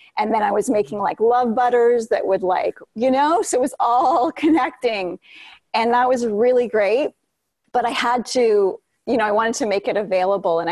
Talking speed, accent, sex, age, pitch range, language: 200 wpm, American, female, 30-49, 190-235 Hz, English